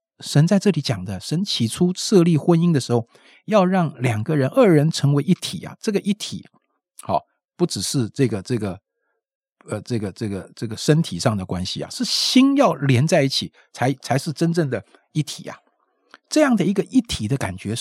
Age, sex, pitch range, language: 50-69, male, 110-170 Hz, Chinese